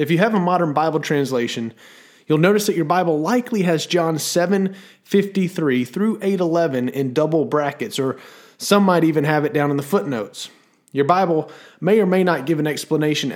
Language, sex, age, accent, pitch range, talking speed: English, male, 30-49, American, 135-175 Hz, 180 wpm